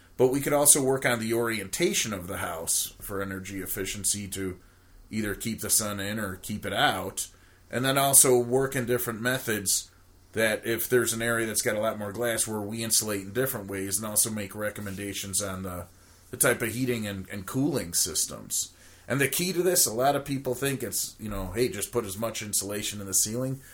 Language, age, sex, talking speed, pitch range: English, 30-49, male, 210 wpm, 95-120 Hz